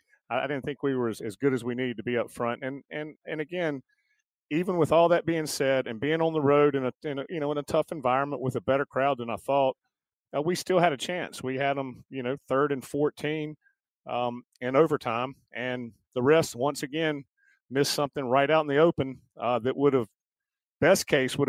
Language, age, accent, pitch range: English, 40-59, American, 125-150 Hz